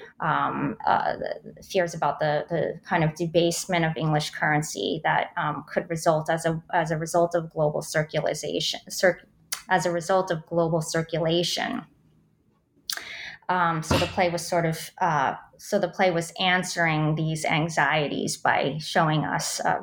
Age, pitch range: 20-39, 165-195 Hz